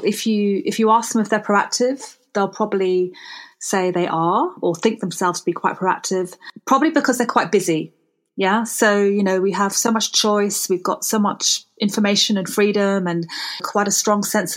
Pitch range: 180-220 Hz